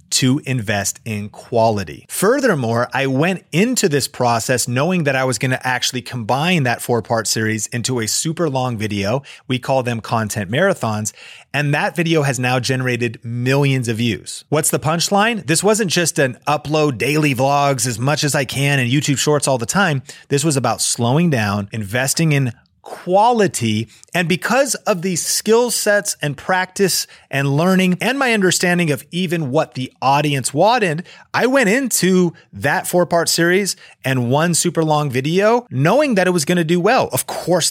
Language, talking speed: English, 175 wpm